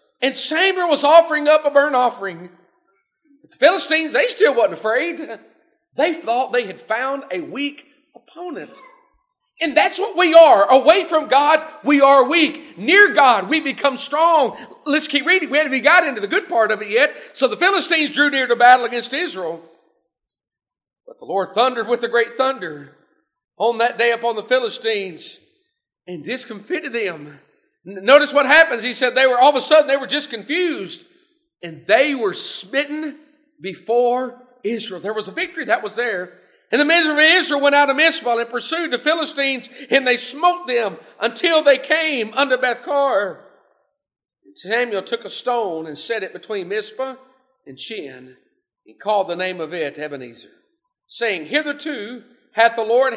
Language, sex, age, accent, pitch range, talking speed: English, male, 40-59, American, 230-320 Hz, 175 wpm